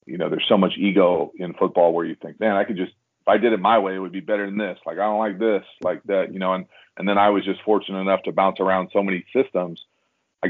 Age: 40-59